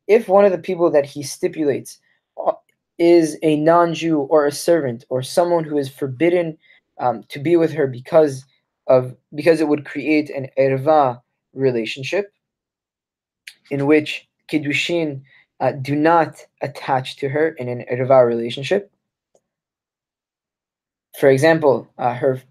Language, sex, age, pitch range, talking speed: English, male, 20-39, 135-175 Hz, 135 wpm